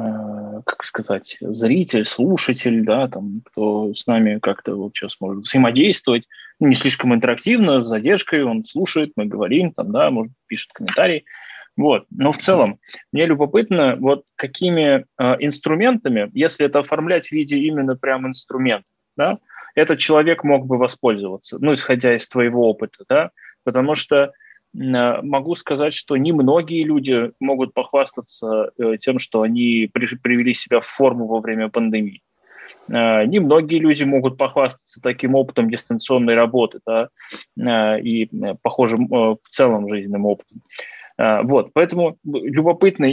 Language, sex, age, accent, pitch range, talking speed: Russian, male, 20-39, native, 120-155 Hz, 130 wpm